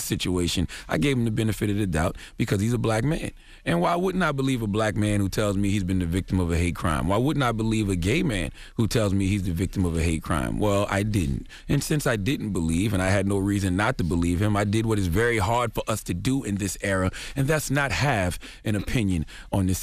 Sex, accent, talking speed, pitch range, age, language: male, American, 265 wpm, 95-120 Hz, 30-49, English